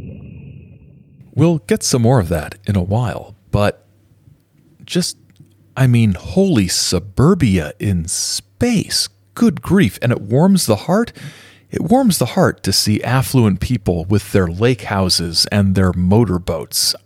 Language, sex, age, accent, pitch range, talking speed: English, male, 40-59, American, 95-130 Hz, 135 wpm